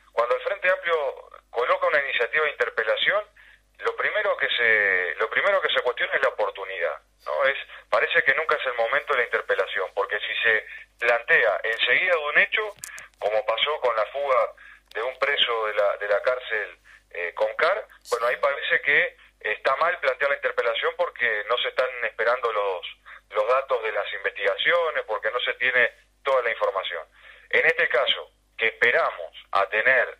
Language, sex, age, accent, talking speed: Spanish, male, 40-59, Argentinian, 180 wpm